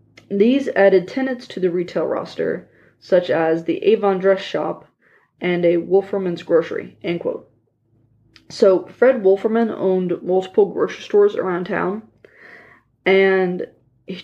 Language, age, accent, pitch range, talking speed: English, 20-39, American, 175-215 Hz, 125 wpm